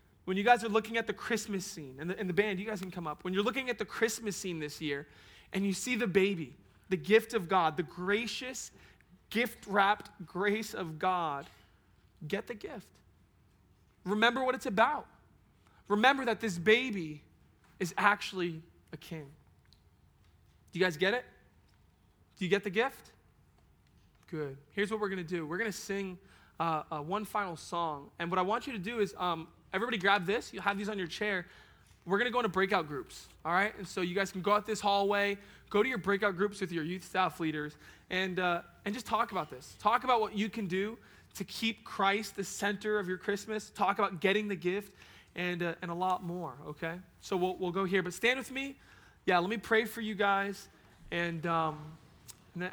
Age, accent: 20-39, American